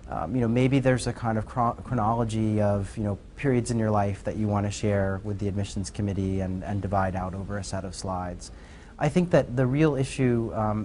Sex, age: male, 30-49